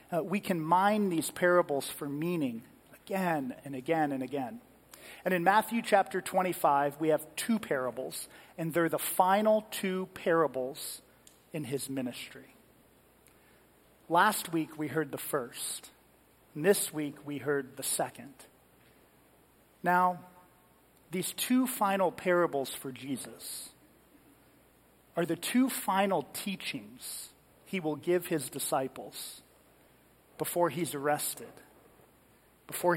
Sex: male